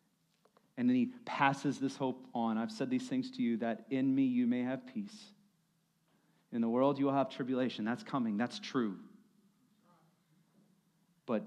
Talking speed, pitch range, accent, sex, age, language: 165 wpm, 130-190 Hz, American, male, 40-59, English